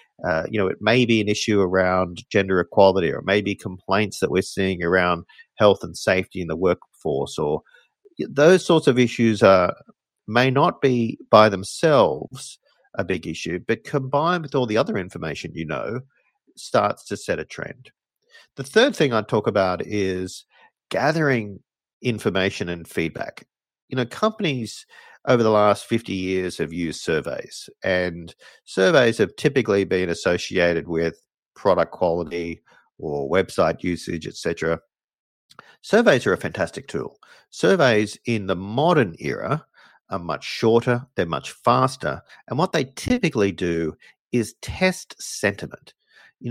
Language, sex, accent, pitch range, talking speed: English, male, Australian, 90-135 Hz, 145 wpm